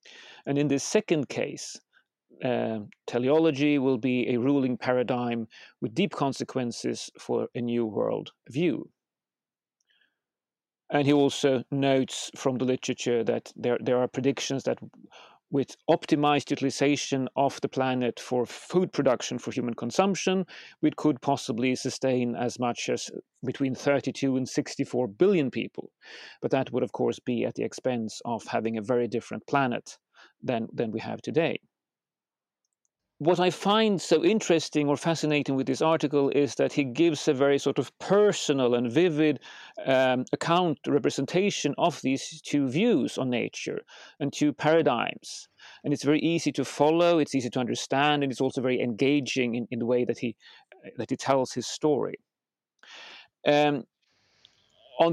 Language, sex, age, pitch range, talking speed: English, male, 40-59, 125-155 Hz, 150 wpm